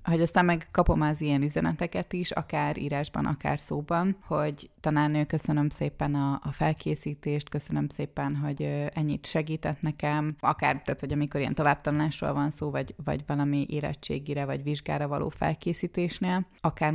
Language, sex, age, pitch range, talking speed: Hungarian, female, 20-39, 145-160 Hz, 150 wpm